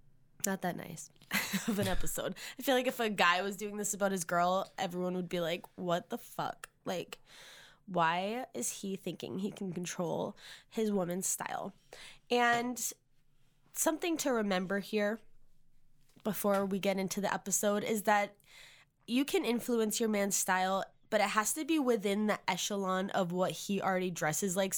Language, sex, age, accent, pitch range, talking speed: English, female, 10-29, American, 175-215 Hz, 165 wpm